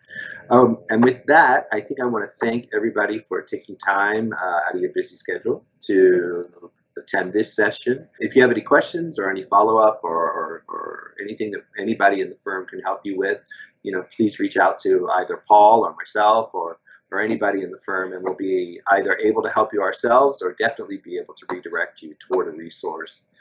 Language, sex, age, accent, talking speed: English, male, 30-49, American, 210 wpm